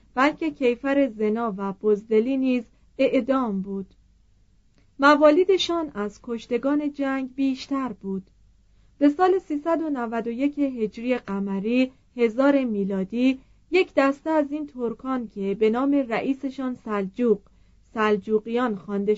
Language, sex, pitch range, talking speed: Persian, female, 205-270 Hz, 105 wpm